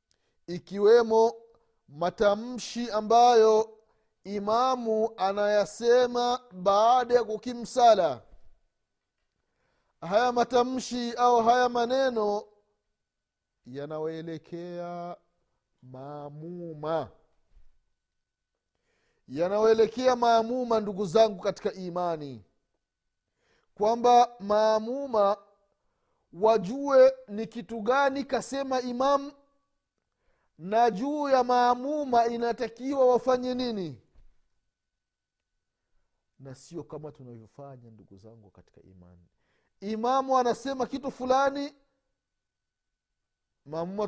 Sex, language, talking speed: male, Swahili, 65 wpm